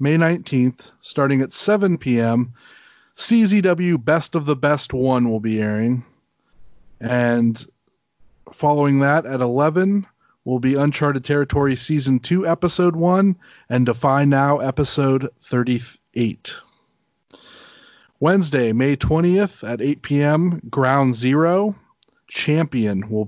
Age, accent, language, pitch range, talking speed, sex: 30-49, American, English, 125-160 Hz, 110 wpm, male